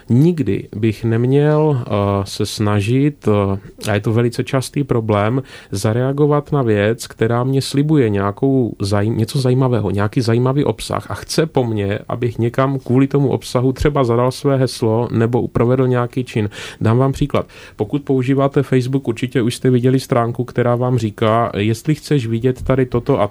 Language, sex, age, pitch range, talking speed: Czech, male, 30-49, 105-130 Hz, 150 wpm